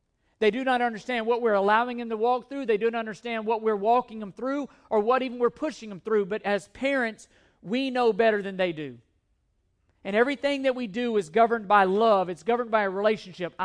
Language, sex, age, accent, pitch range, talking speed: English, male, 40-59, American, 180-230 Hz, 220 wpm